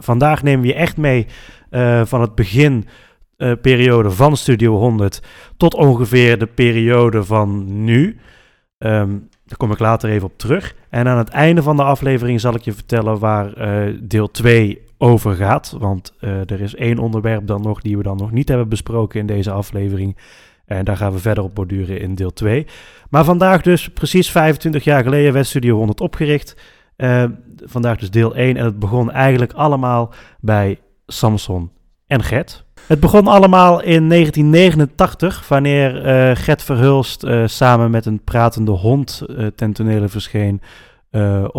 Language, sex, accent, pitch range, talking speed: Dutch, male, Dutch, 105-140 Hz, 170 wpm